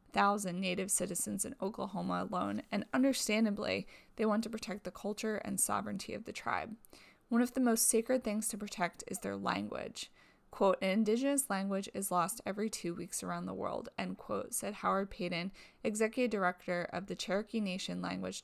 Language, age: English, 20-39